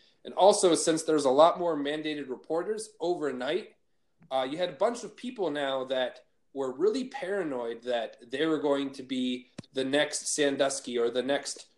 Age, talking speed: 20-39, 175 wpm